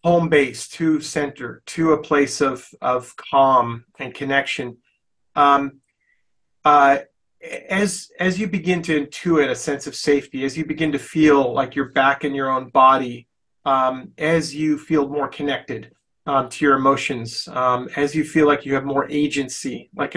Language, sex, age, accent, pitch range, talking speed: English, male, 30-49, American, 140-160 Hz, 165 wpm